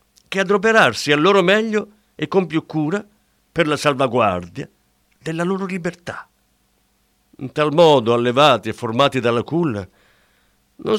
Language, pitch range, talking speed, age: Italian, 125-200 Hz, 130 wpm, 50-69